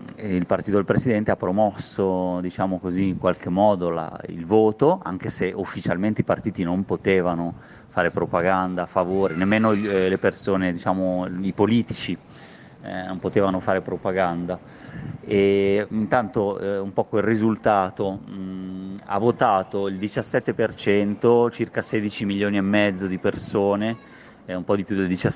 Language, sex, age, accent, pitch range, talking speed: Italian, male, 30-49, native, 90-105 Hz, 145 wpm